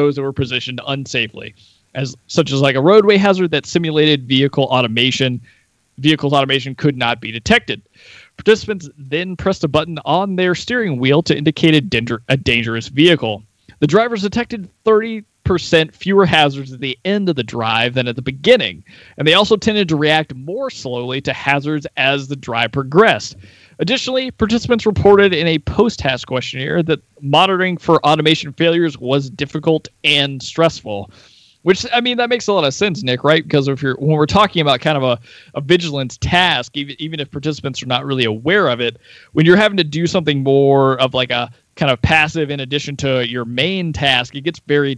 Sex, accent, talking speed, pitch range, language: male, American, 185 wpm, 125-170 Hz, English